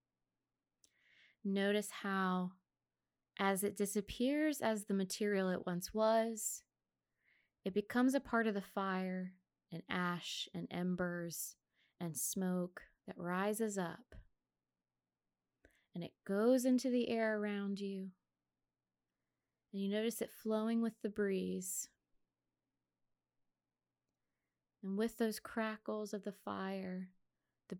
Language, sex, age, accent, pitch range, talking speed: English, female, 20-39, American, 180-220 Hz, 110 wpm